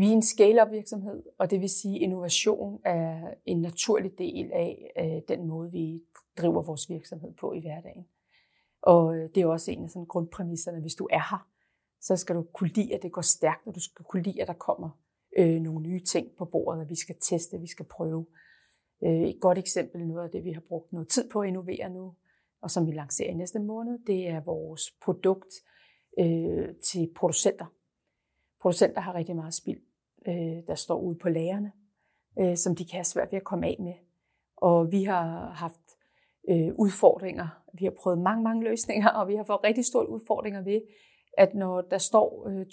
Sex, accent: female, native